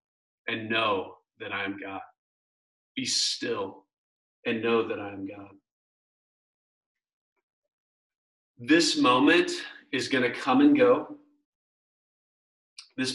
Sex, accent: male, American